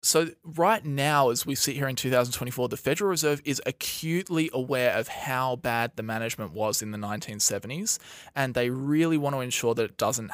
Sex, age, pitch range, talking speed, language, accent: male, 20-39, 115-145 Hz, 190 wpm, English, Australian